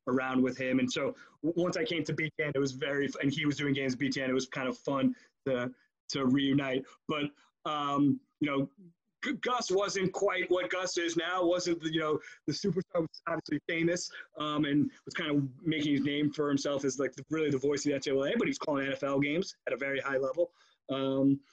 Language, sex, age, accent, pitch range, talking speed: English, male, 30-49, American, 135-165 Hz, 225 wpm